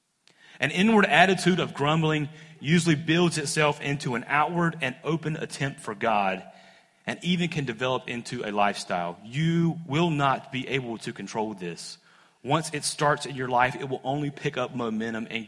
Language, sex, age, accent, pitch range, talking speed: English, male, 30-49, American, 115-155 Hz, 170 wpm